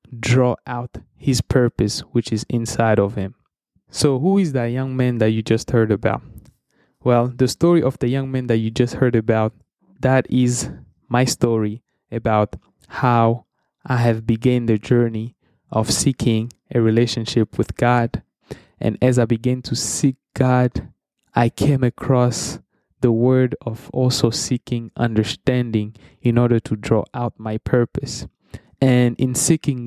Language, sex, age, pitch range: English, male, 20-39, 115-130 Hz